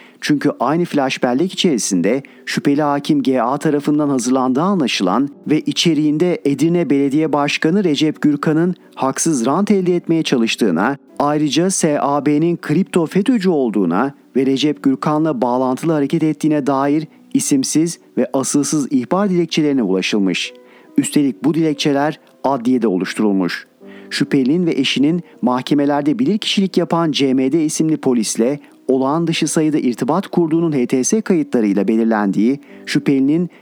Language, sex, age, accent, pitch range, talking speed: Turkish, male, 50-69, native, 135-170 Hz, 115 wpm